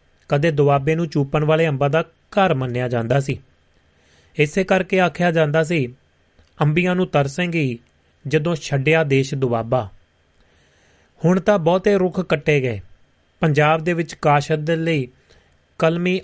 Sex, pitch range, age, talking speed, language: male, 120-165 Hz, 30-49, 135 wpm, Punjabi